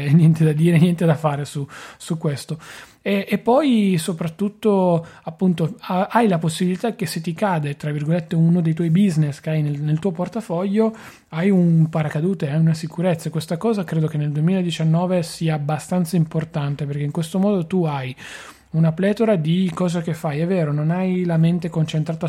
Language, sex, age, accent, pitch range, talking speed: Italian, male, 30-49, native, 155-175 Hz, 180 wpm